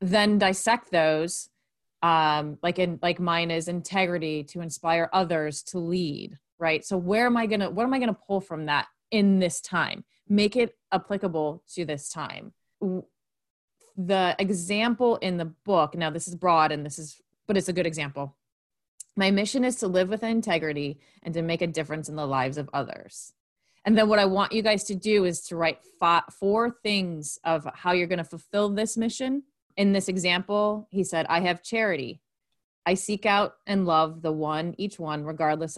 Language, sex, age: English, female, 30-49